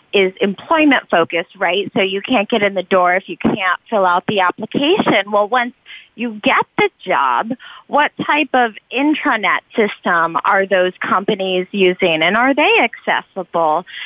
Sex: female